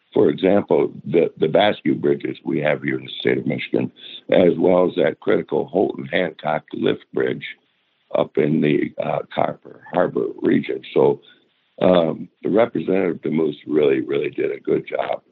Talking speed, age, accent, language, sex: 160 wpm, 60-79, American, English, male